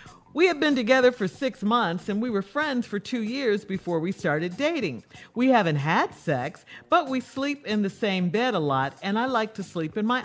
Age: 50-69